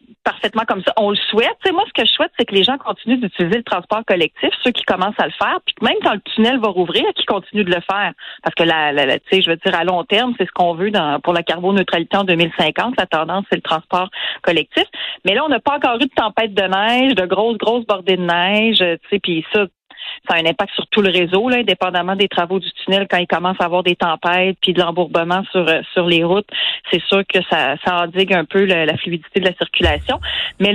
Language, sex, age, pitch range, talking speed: French, female, 40-59, 175-215 Hz, 250 wpm